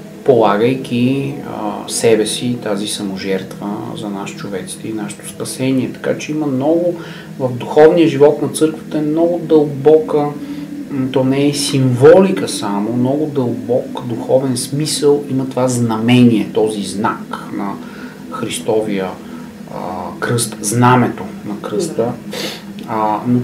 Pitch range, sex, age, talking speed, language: 115-160 Hz, male, 40-59, 115 wpm, Bulgarian